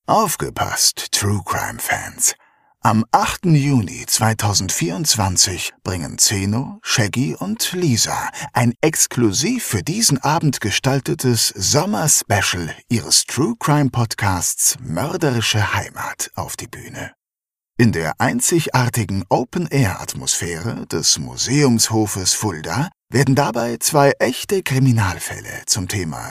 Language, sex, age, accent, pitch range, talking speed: German, male, 50-69, German, 110-140 Hz, 95 wpm